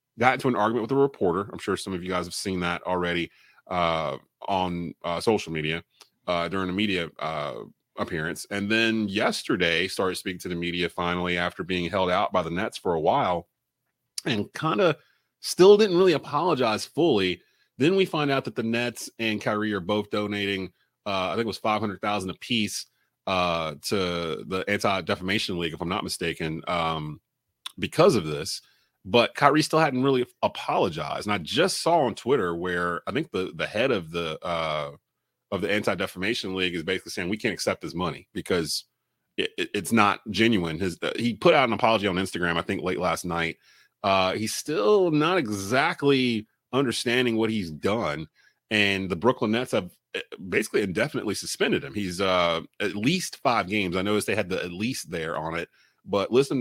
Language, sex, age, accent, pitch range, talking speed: English, male, 30-49, American, 90-115 Hz, 185 wpm